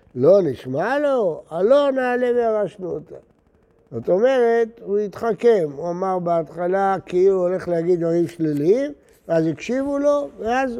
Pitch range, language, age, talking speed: 165-220 Hz, Hebrew, 60-79, 135 wpm